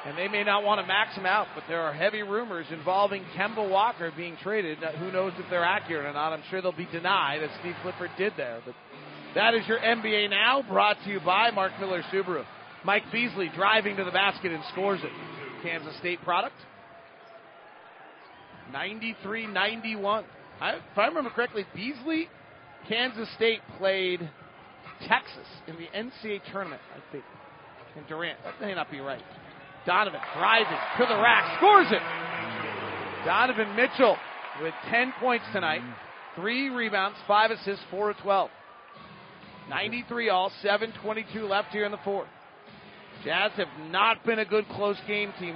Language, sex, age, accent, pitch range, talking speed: English, male, 40-59, American, 175-215 Hz, 160 wpm